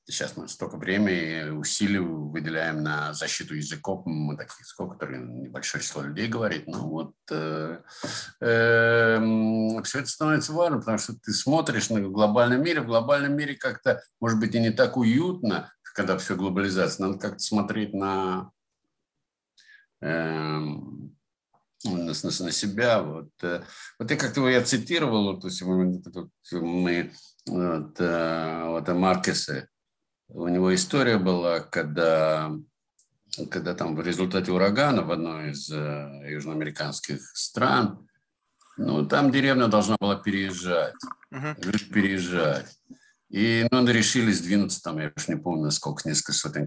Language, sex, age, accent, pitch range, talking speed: Russian, male, 60-79, native, 80-115 Hz, 135 wpm